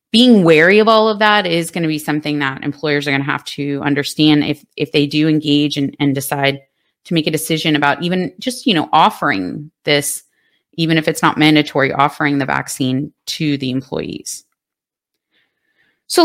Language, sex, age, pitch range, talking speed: English, female, 30-49, 145-195 Hz, 185 wpm